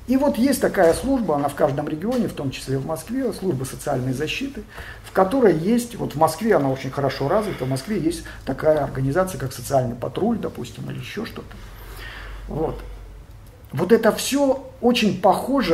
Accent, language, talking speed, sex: native, Russian, 170 wpm, male